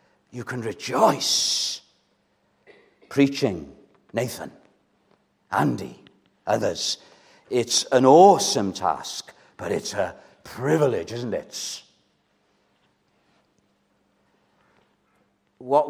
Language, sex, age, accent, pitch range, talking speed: English, male, 60-79, British, 125-185 Hz, 70 wpm